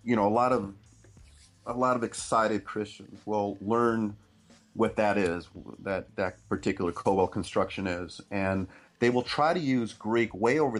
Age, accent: 40-59, American